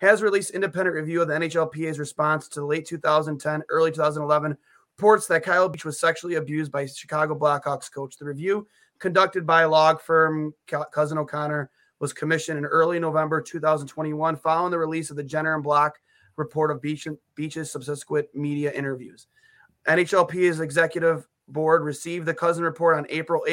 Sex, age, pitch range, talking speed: male, 20-39, 150-180 Hz, 160 wpm